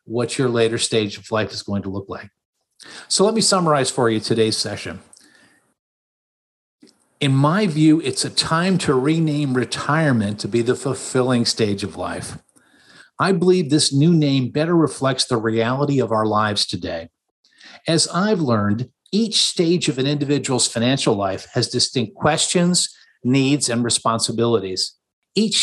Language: English